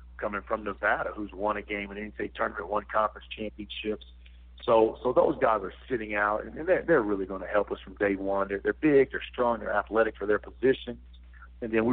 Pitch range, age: 95-110 Hz, 50-69